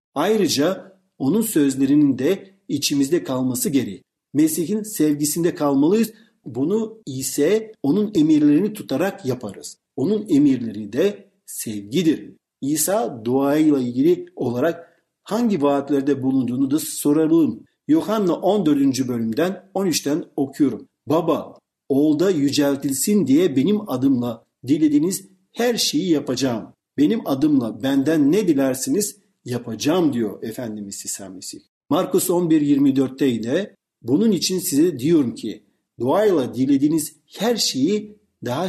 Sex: male